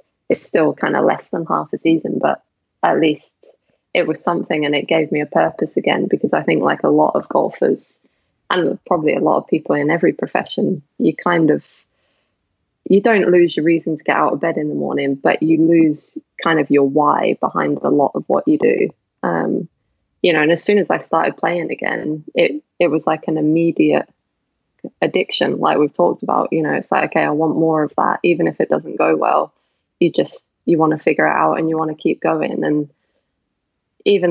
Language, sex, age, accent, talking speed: English, female, 10-29, British, 215 wpm